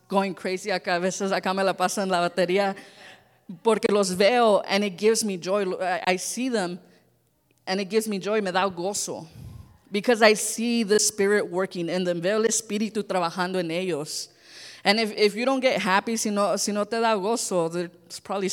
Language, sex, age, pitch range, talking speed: English, female, 20-39, 180-210 Hz, 185 wpm